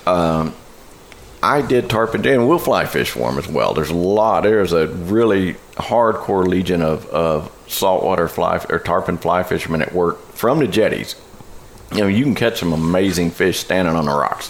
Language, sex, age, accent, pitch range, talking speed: English, male, 50-69, American, 80-90 Hz, 185 wpm